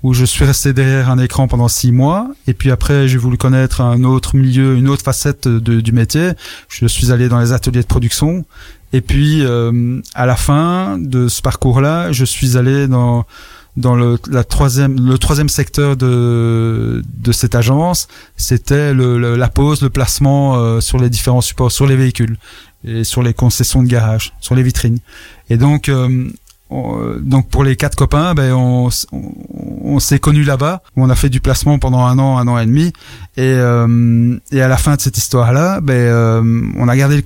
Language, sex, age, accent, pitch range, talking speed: French, male, 30-49, French, 120-140 Hz, 200 wpm